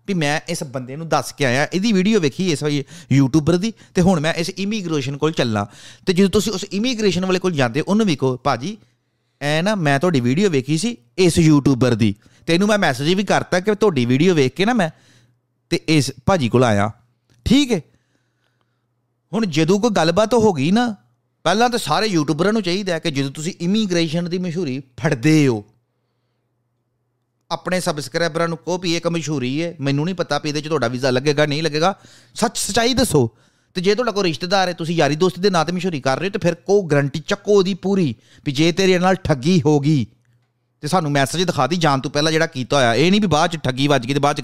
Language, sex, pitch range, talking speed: Punjabi, male, 130-185 Hz, 215 wpm